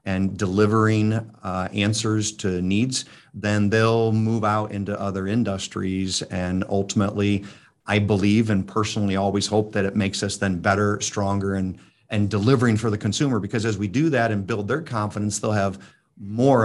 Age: 50-69